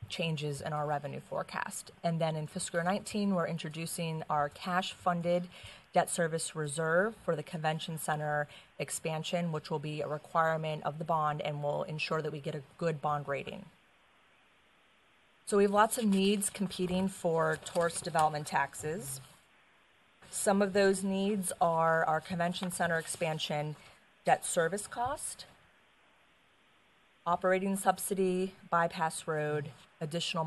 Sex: female